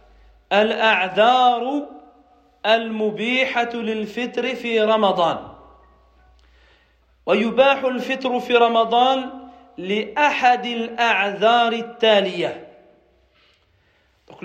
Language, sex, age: French, male, 40-59